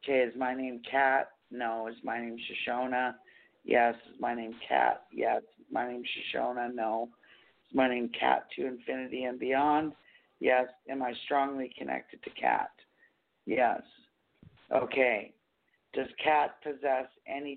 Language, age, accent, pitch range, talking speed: English, 50-69, American, 120-150 Hz, 140 wpm